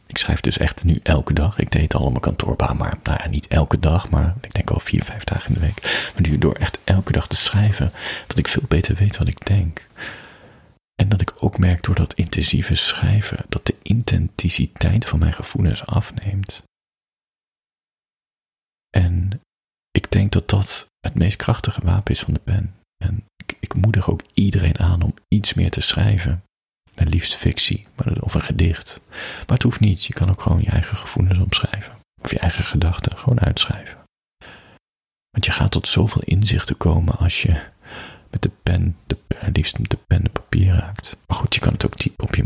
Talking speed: 195 wpm